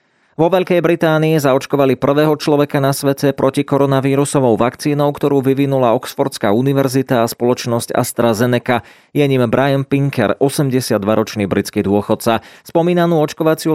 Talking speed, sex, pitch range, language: 120 wpm, male, 115-140 Hz, Slovak